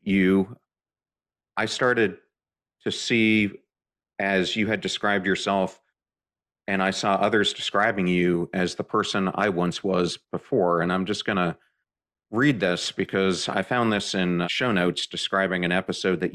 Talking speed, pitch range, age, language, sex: 145 wpm, 85-100 Hz, 40-59, English, male